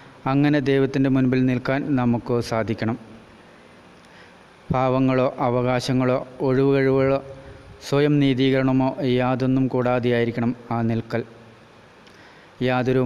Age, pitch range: 30-49, 120-135 Hz